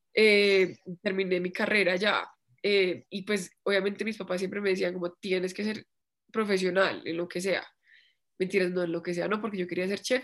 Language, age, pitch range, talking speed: Spanish, 20-39, 185-220 Hz, 205 wpm